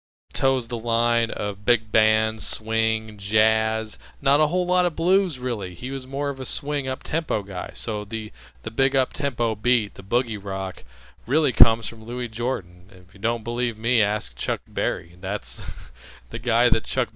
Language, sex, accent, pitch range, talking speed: English, male, American, 95-125 Hz, 175 wpm